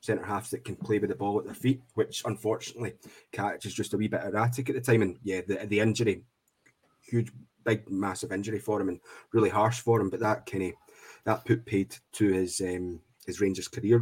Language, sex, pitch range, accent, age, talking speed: English, male, 100-120 Hz, British, 20-39, 220 wpm